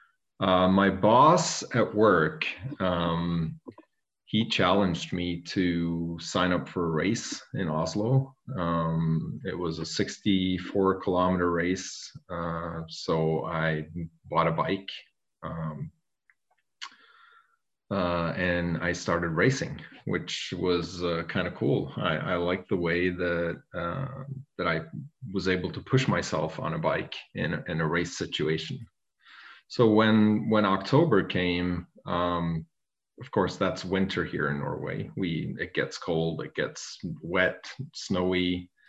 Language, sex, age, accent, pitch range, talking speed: English, male, 30-49, Canadian, 85-105 Hz, 130 wpm